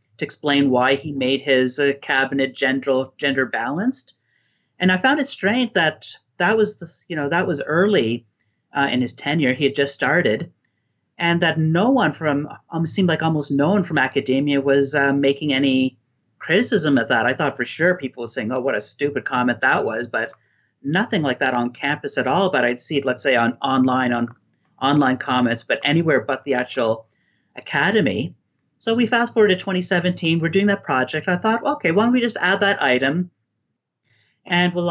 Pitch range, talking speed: 130-175 Hz, 195 wpm